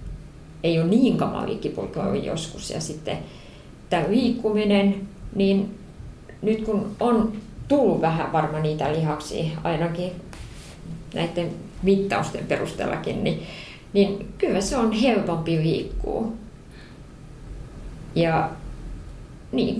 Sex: female